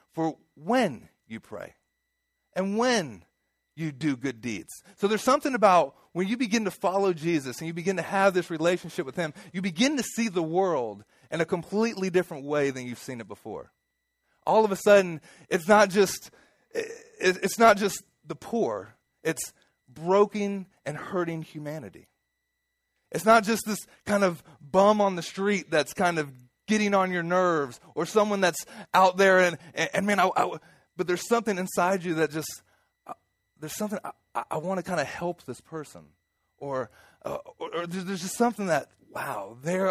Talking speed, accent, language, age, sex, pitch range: 175 wpm, American, English, 30-49, male, 155-205 Hz